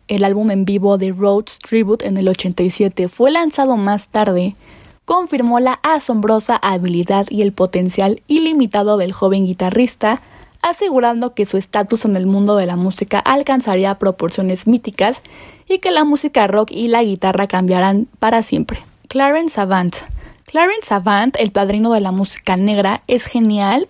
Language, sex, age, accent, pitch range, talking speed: Spanish, female, 10-29, Mexican, 195-255 Hz, 155 wpm